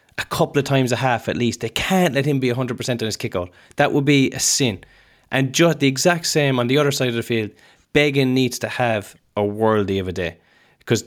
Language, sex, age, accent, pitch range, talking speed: English, male, 20-39, Irish, 120-155 Hz, 240 wpm